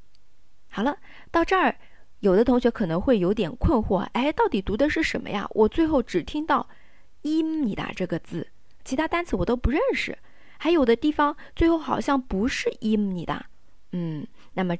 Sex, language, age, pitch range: female, Chinese, 20-39, 180-275 Hz